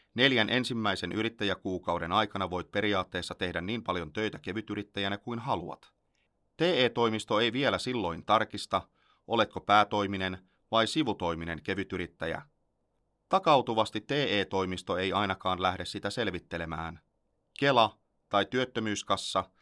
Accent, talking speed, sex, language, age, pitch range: native, 100 wpm, male, Finnish, 30-49, 90-110 Hz